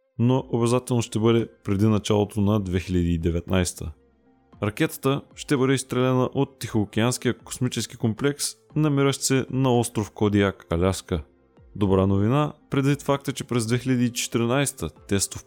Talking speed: 115 wpm